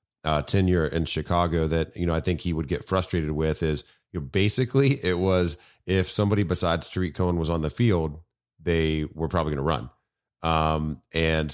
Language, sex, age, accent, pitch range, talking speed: English, male, 30-49, American, 80-95 Hz, 175 wpm